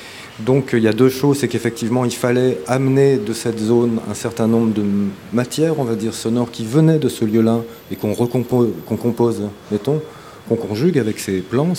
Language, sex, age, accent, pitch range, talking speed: French, male, 30-49, French, 110-130 Hz, 190 wpm